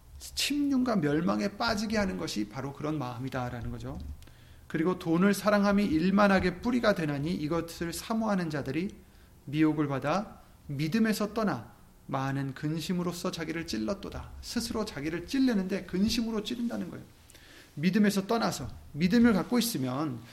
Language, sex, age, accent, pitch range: Korean, male, 30-49, native, 125-195 Hz